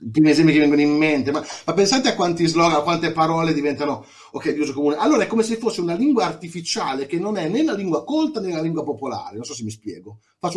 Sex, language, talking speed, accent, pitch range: male, Italian, 255 wpm, native, 130-190 Hz